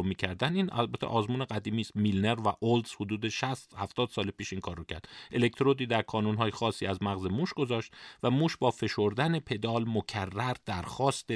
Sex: male